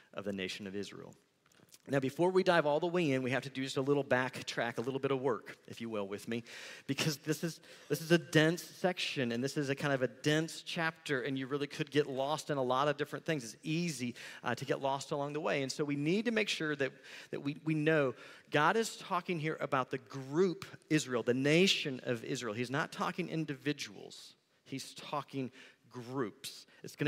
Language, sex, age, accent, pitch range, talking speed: English, male, 40-59, American, 135-170 Hz, 225 wpm